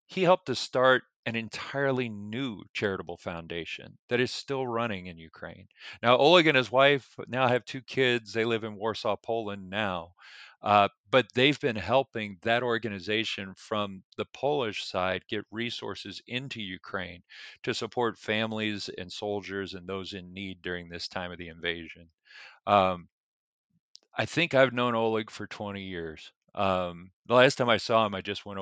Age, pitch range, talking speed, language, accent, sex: 40-59, 95-125 Hz, 165 wpm, English, American, male